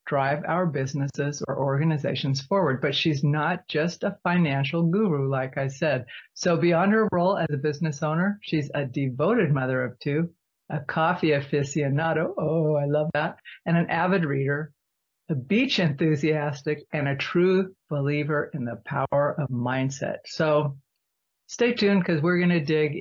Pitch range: 140-170 Hz